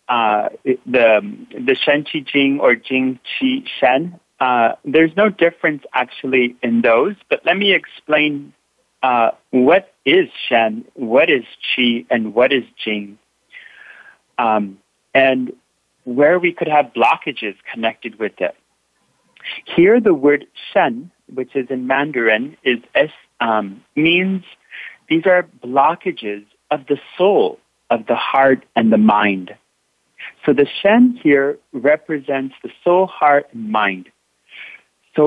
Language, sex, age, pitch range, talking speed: English, male, 40-59, 115-170 Hz, 130 wpm